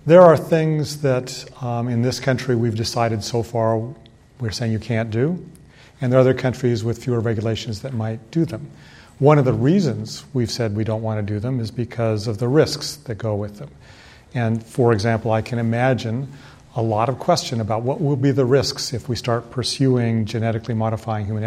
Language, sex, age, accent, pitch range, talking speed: English, male, 40-59, American, 115-130 Hz, 205 wpm